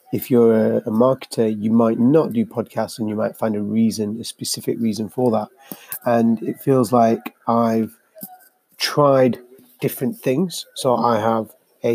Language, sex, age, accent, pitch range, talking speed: English, male, 30-49, British, 115-135 Hz, 160 wpm